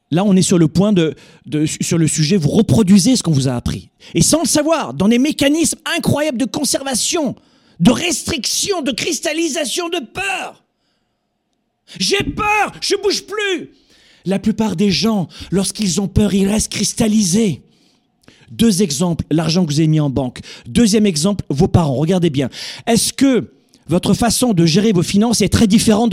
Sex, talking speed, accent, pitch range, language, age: male, 170 wpm, French, 165-250 Hz, French, 40-59